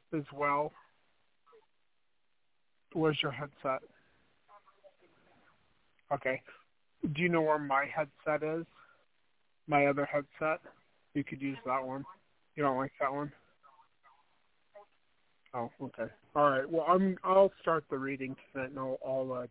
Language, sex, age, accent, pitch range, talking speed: English, male, 40-59, American, 130-155 Hz, 125 wpm